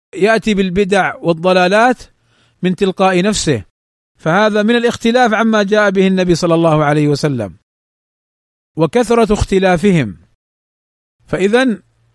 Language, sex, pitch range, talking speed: Arabic, male, 150-225 Hz, 100 wpm